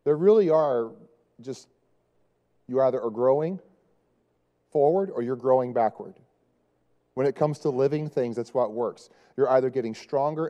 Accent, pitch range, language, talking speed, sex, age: American, 115-150 Hz, English, 150 wpm, male, 30-49